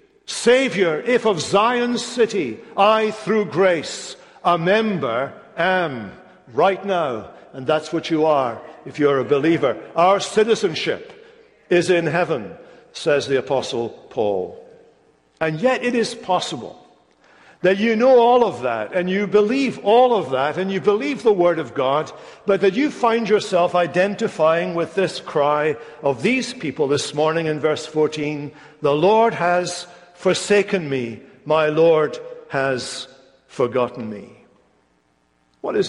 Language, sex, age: English, male, 60-79